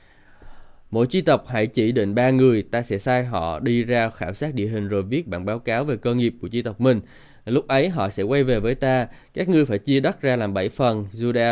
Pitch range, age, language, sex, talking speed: 105-135 Hz, 20-39, Vietnamese, male, 250 wpm